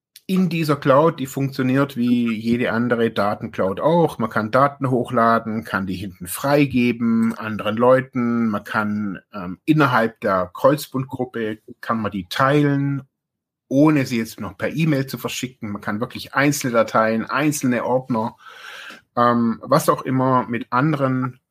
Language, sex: German, male